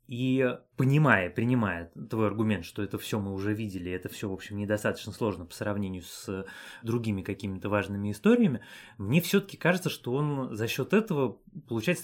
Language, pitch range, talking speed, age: Russian, 105-130 Hz, 165 wpm, 20-39